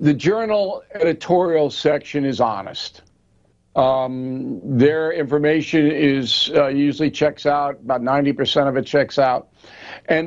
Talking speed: 125 wpm